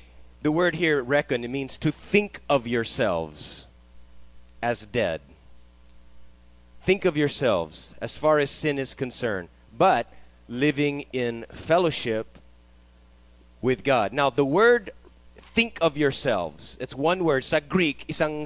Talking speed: 125 wpm